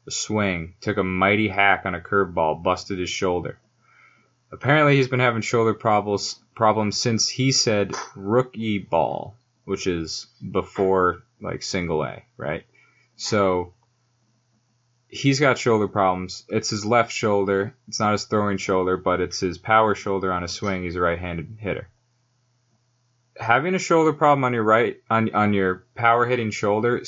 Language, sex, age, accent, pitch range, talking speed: English, male, 20-39, American, 100-120 Hz, 155 wpm